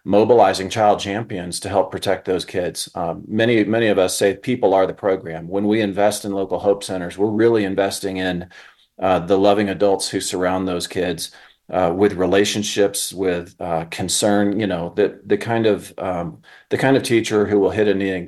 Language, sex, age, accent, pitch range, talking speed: English, male, 40-59, American, 95-105 Hz, 195 wpm